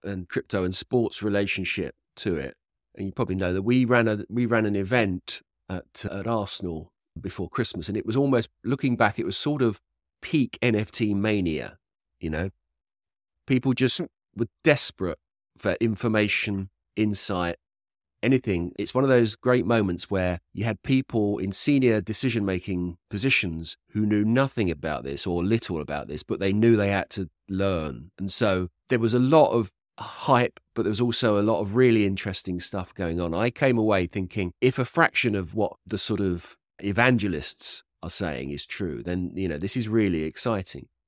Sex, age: male, 30-49